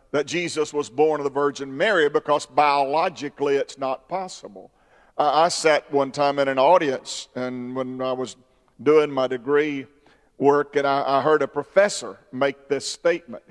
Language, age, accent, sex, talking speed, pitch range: English, 50-69, American, male, 170 wpm, 140-180 Hz